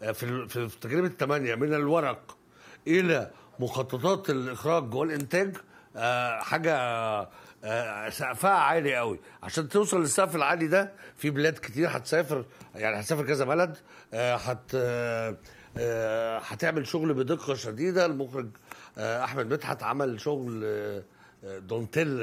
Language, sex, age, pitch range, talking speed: Arabic, male, 60-79, 125-175 Hz, 95 wpm